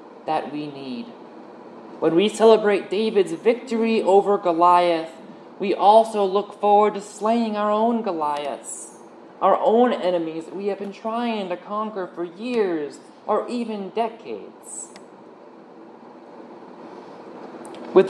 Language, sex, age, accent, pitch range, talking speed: English, male, 20-39, American, 165-215 Hz, 115 wpm